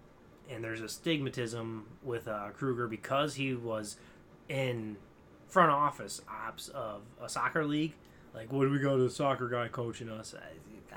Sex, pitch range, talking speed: male, 120-170 Hz, 165 wpm